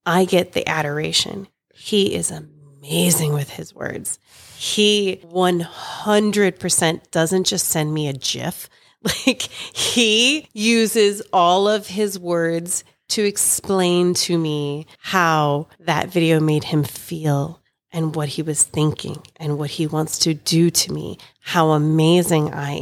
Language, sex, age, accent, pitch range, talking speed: English, female, 30-49, American, 155-205 Hz, 135 wpm